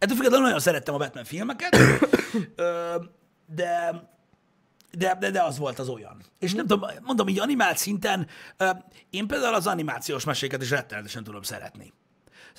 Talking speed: 140 wpm